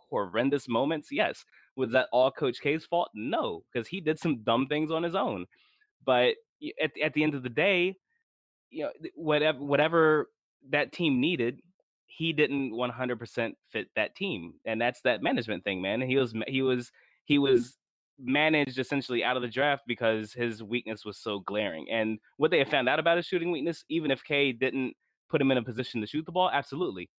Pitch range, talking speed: 110-150 Hz, 200 wpm